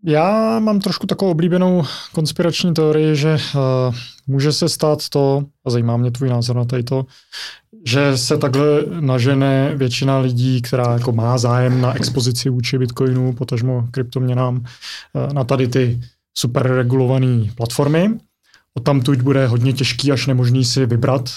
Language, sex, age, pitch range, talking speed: Czech, male, 20-39, 120-140 Hz, 150 wpm